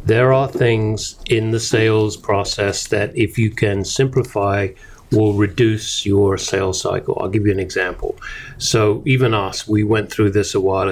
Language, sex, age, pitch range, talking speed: English, male, 40-59, 100-120 Hz, 170 wpm